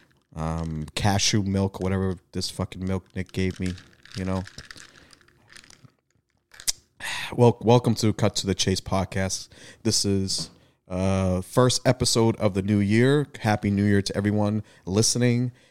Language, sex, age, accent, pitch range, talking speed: English, male, 30-49, American, 90-110 Hz, 135 wpm